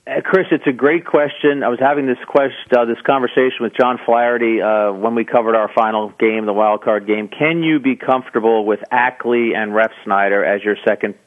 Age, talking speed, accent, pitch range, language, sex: 40-59, 210 wpm, American, 120-150 Hz, English, male